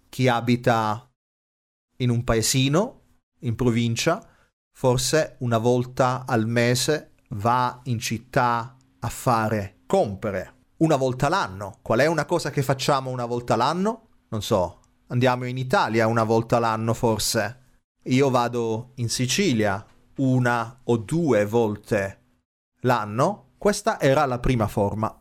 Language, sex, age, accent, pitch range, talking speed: Italian, male, 40-59, native, 110-135 Hz, 125 wpm